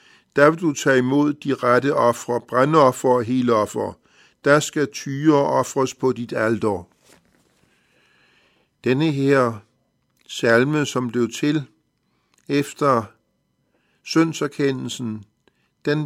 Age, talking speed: 60-79, 100 wpm